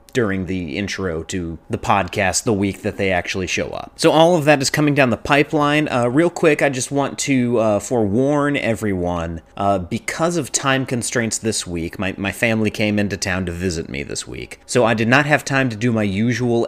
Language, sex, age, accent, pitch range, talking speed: English, male, 30-49, American, 100-130 Hz, 215 wpm